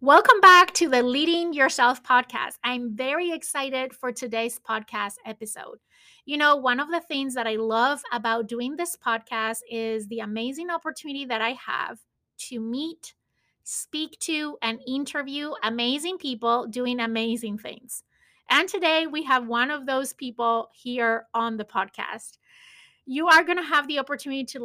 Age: 30-49